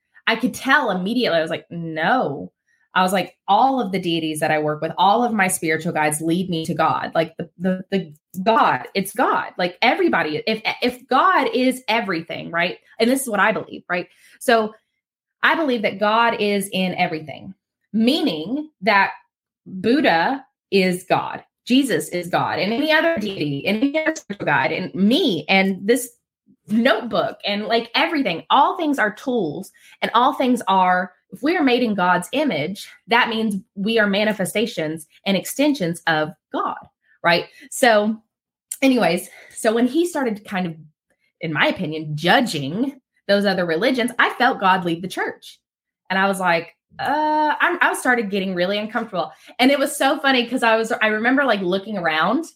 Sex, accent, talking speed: female, American, 170 wpm